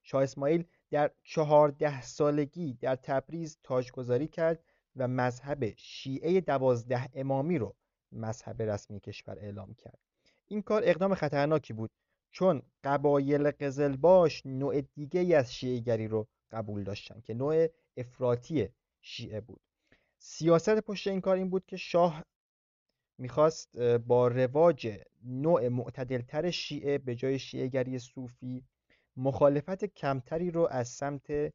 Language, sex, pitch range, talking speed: Persian, male, 125-155 Hz, 125 wpm